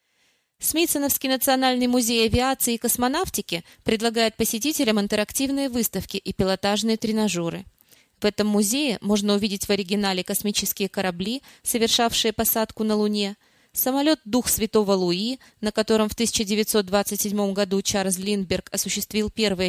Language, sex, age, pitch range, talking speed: Russian, female, 20-39, 195-240 Hz, 120 wpm